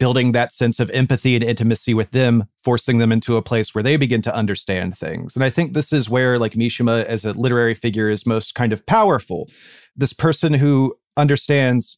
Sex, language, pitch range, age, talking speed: male, English, 105-130 Hz, 30-49, 205 wpm